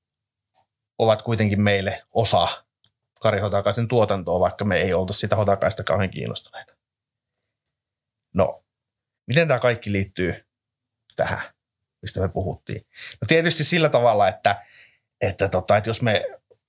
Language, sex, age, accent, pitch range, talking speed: Finnish, male, 30-49, native, 100-115 Hz, 120 wpm